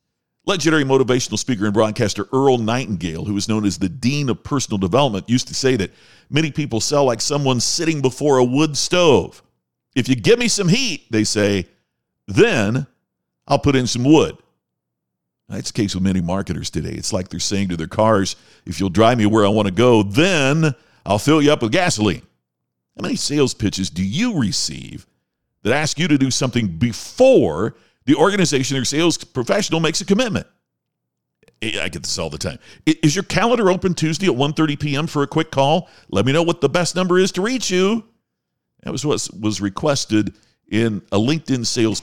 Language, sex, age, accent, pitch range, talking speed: English, male, 50-69, American, 105-160 Hz, 190 wpm